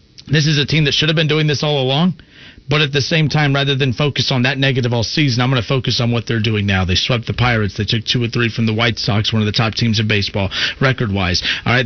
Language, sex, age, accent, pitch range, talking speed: English, male, 40-59, American, 125-160 Hz, 290 wpm